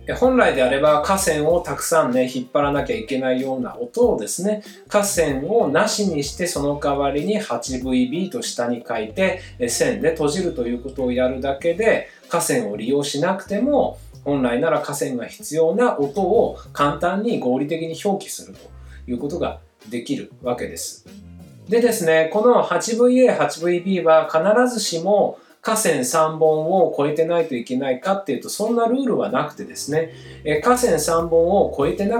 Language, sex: Japanese, male